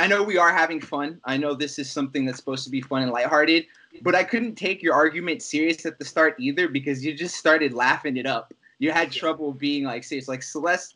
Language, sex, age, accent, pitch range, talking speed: English, male, 20-39, American, 125-160 Hz, 240 wpm